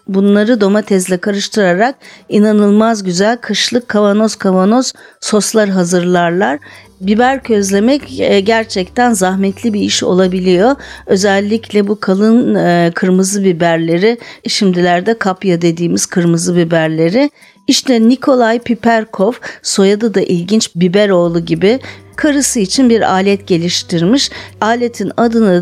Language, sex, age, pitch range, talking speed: Turkish, female, 40-59, 190-235 Hz, 100 wpm